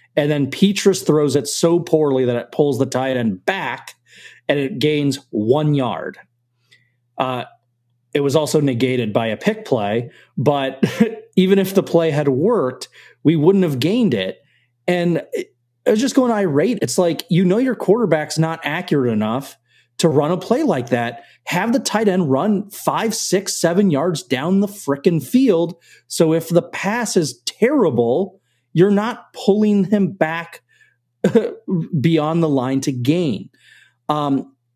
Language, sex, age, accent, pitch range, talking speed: English, male, 30-49, American, 120-170 Hz, 155 wpm